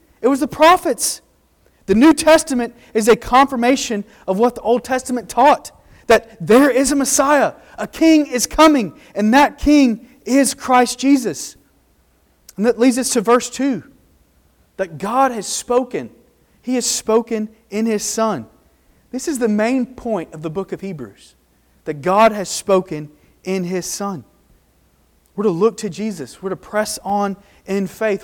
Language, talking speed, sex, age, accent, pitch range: English, 160 wpm, male, 30-49, American, 190-235 Hz